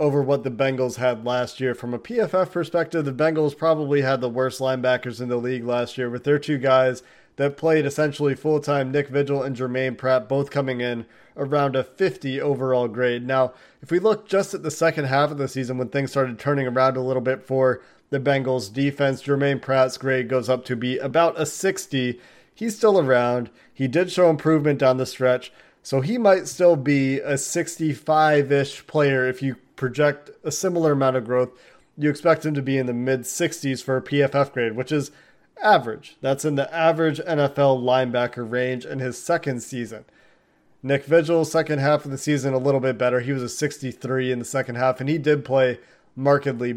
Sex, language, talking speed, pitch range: male, English, 200 wpm, 130-150 Hz